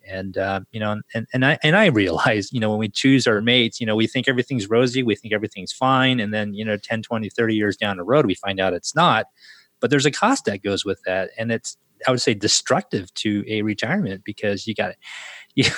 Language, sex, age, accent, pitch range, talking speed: English, male, 30-49, American, 105-130 Hz, 245 wpm